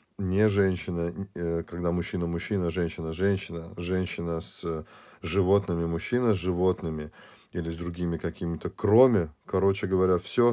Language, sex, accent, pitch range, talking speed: Russian, male, native, 85-95 Hz, 115 wpm